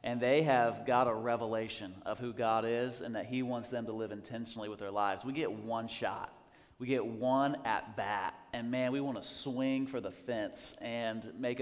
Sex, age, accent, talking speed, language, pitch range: male, 30-49, American, 210 wpm, English, 120-150 Hz